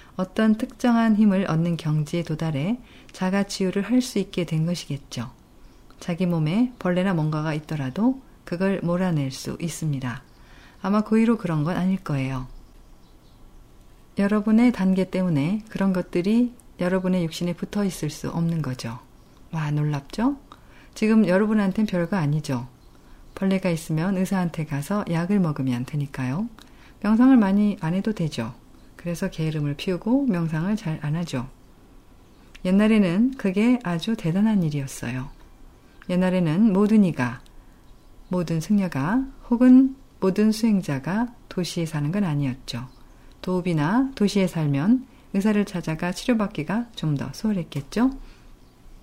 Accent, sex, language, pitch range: native, female, Korean, 155-215 Hz